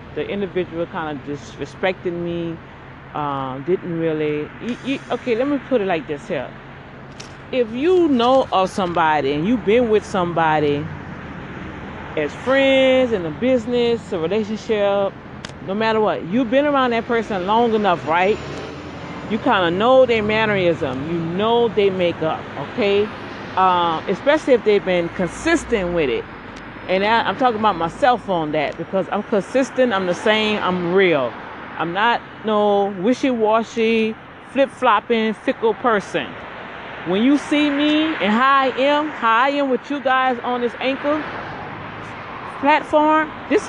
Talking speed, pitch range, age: 145 wpm, 185-260 Hz, 40-59